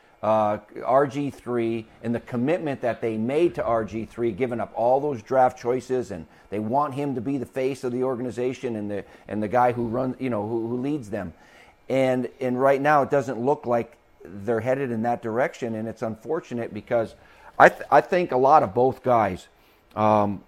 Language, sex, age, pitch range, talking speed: English, male, 50-69, 110-135 Hz, 195 wpm